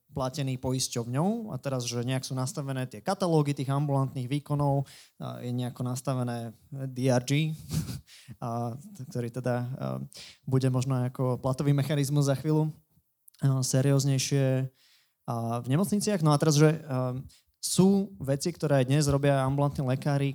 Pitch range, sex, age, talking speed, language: 125-155 Hz, male, 20-39, 140 wpm, Slovak